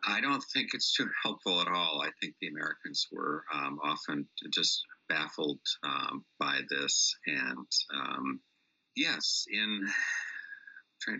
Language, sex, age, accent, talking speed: English, male, 50-69, American, 135 wpm